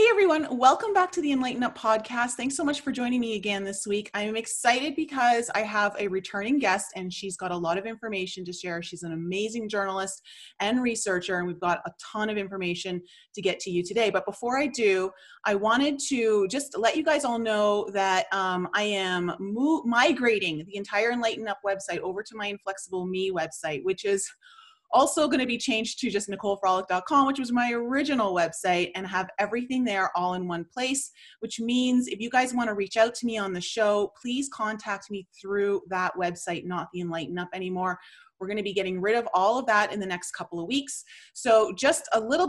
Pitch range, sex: 195-255 Hz, female